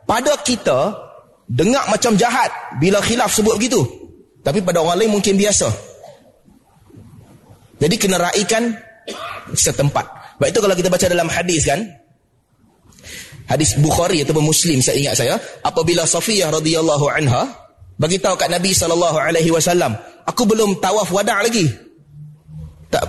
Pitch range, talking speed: 135-205 Hz, 120 wpm